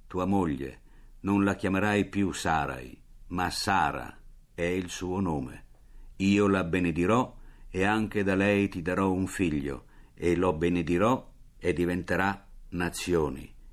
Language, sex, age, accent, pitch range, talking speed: Italian, male, 50-69, native, 85-105 Hz, 130 wpm